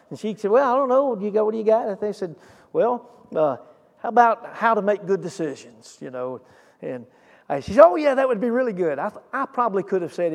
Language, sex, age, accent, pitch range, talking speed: English, male, 40-59, American, 165-225 Hz, 265 wpm